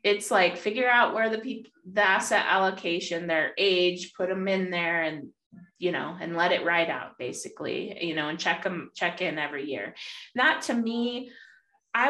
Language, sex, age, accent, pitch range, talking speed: English, female, 20-39, American, 160-195 Hz, 190 wpm